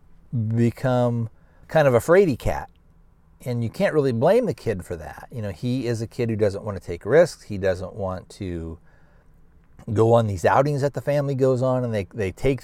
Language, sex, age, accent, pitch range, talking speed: English, male, 40-59, American, 100-125 Hz, 210 wpm